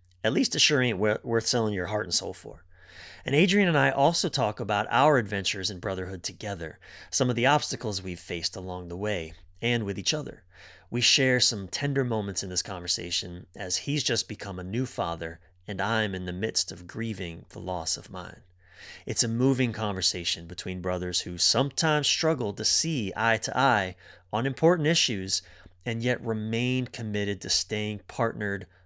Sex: male